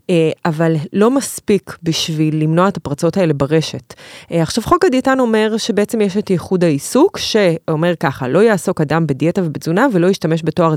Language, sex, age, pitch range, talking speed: English, female, 30-49, 160-200 Hz, 155 wpm